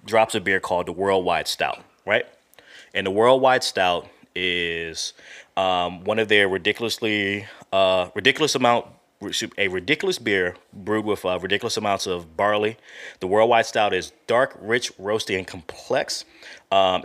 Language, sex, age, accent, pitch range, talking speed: English, male, 20-39, American, 95-115 Hz, 145 wpm